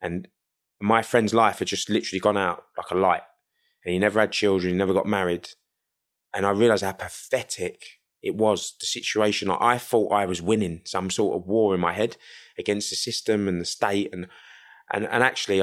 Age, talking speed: 20-39, 205 wpm